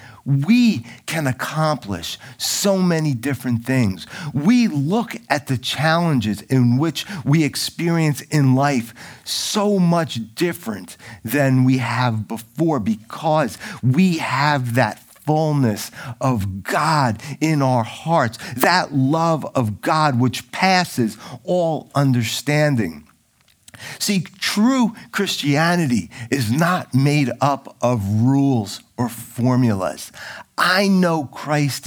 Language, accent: English, American